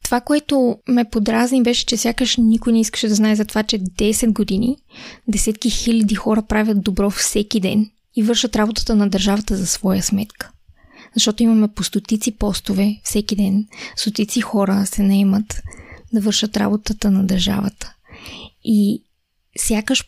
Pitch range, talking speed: 200-235 Hz, 150 wpm